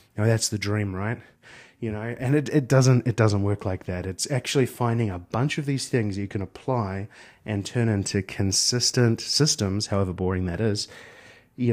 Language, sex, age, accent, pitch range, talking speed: English, male, 30-49, Australian, 100-125 Hz, 185 wpm